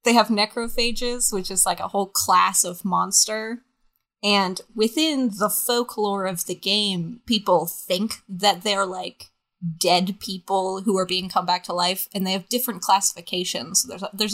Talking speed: 160 wpm